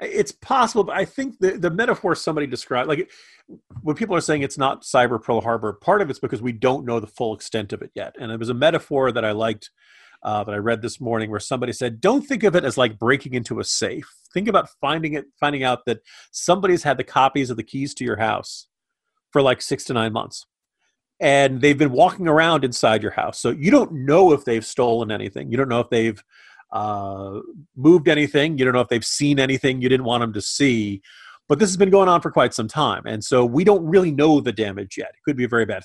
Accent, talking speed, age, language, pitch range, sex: American, 240 wpm, 40-59, English, 115-150 Hz, male